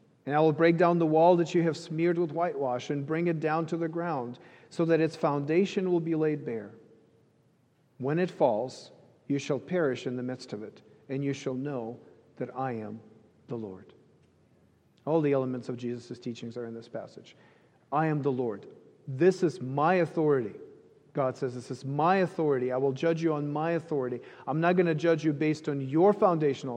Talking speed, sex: 200 wpm, male